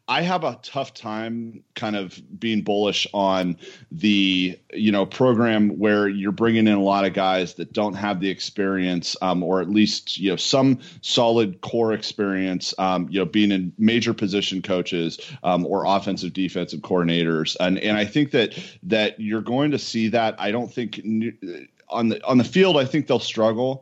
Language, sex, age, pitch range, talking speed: English, male, 30-49, 95-115 Hz, 185 wpm